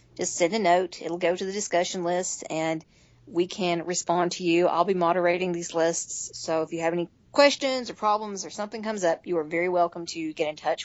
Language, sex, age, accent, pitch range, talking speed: English, female, 40-59, American, 170-220 Hz, 225 wpm